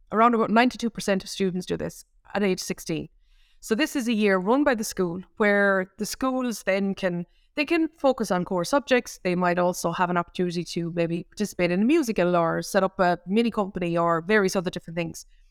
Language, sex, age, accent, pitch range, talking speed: English, female, 20-39, Irish, 185-235 Hz, 205 wpm